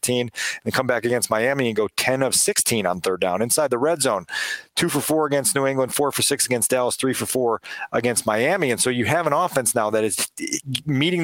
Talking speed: 230 wpm